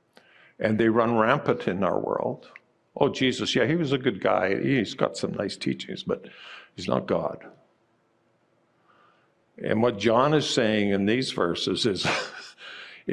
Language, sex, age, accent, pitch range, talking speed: English, male, 50-69, American, 100-125 Hz, 150 wpm